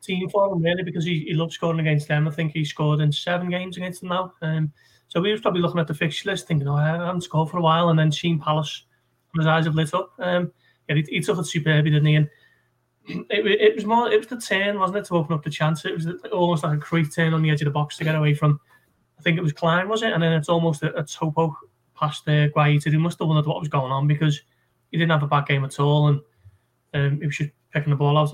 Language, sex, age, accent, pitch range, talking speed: English, male, 20-39, British, 150-175 Hz, 285 wpm